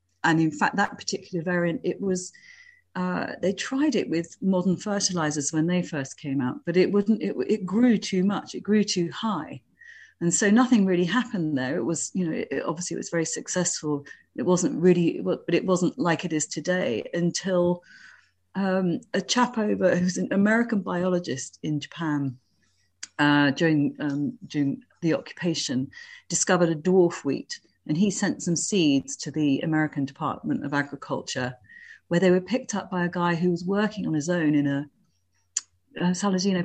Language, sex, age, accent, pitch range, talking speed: English, female, 40-59, British, 150-190 Hz, 180 wpm